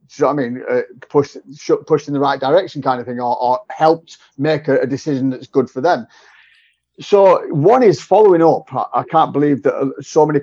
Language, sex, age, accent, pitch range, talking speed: English, male, 30-49, British, 125-150 Hz, 205 wpm